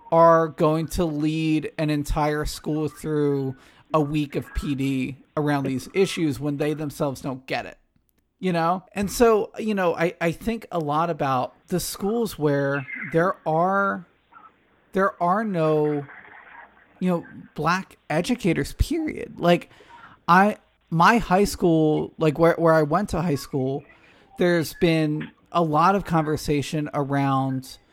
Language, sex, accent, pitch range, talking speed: English, male, American, 150-195 Hz, 140 wpm